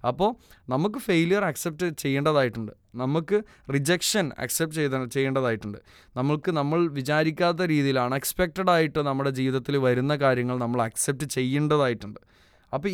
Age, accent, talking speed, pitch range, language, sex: 20-39, native, 110 wpm, 130-160 Hz, Malayalam, male